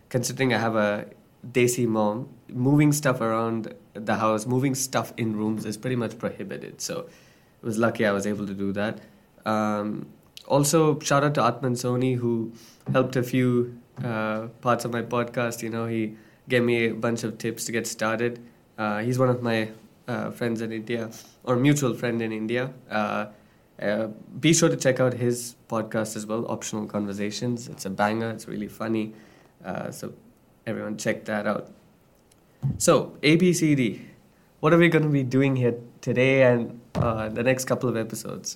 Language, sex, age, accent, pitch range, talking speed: English, male, 20-39, Indian, 110-130 Hz, 175 wpm